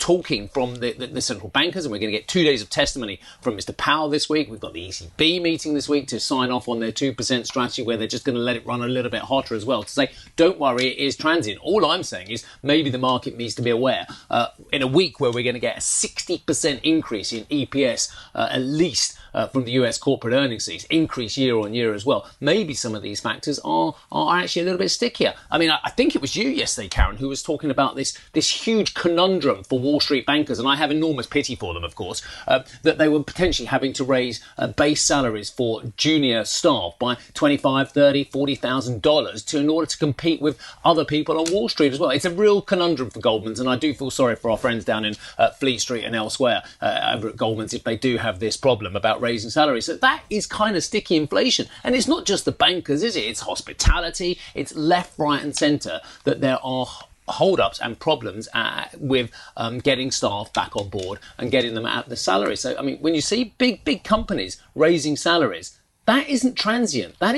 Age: 30-49